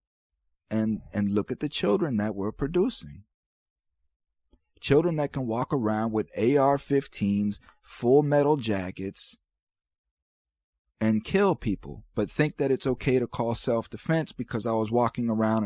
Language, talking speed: English, 135 wpm